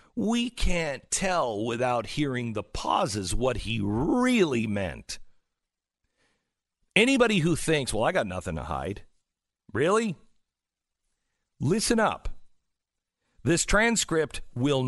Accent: American